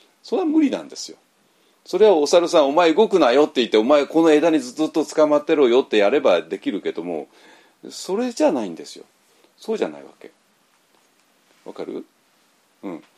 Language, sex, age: Japanese, male, 40-59